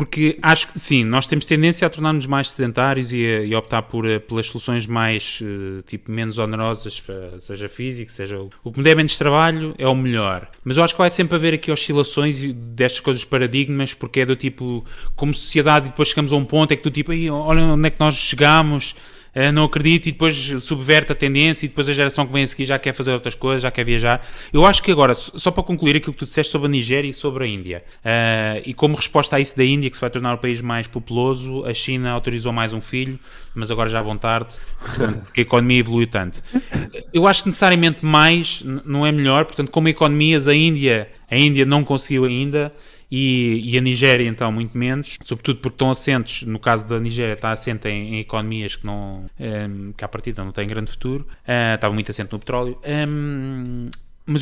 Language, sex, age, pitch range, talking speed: Portuguese, male, 20-39, 115-150 Hz, 220 wpm